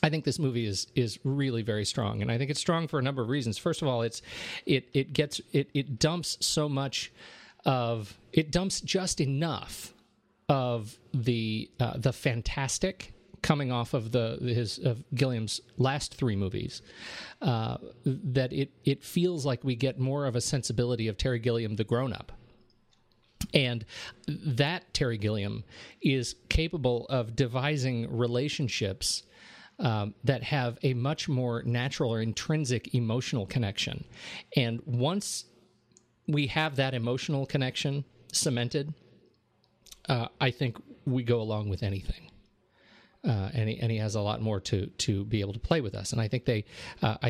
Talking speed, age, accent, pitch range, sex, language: 160 wpm, 40-59, American, 110-140 Hz, male, English